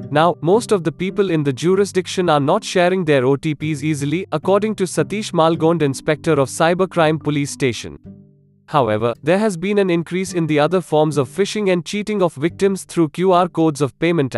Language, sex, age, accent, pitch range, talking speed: English, male, 20-39, Indian, 145-180 Hz, 185 wpm